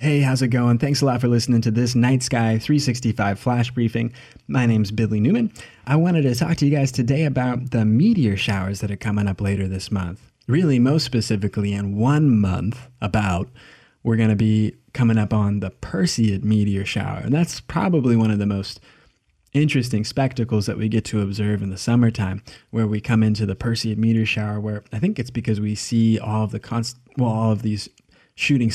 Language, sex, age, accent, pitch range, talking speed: English, male, 20-39, American, 105-120 Hz, 195 wpm